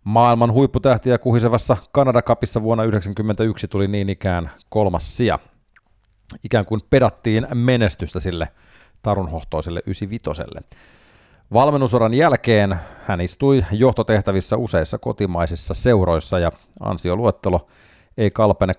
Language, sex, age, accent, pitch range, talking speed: Finnish, male, 30-49, native, 85-110 Hz, 95 wpm